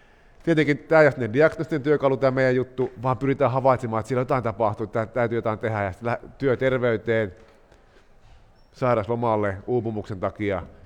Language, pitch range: Finnish, 105-130 Hz